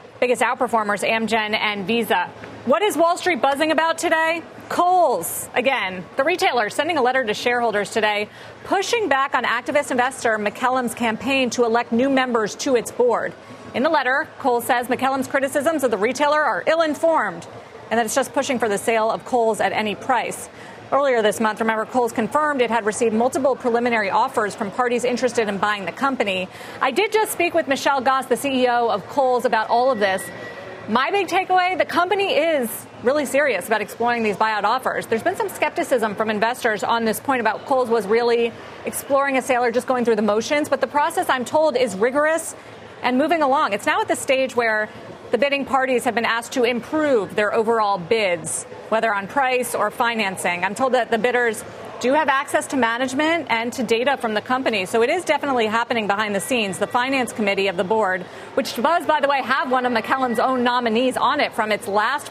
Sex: female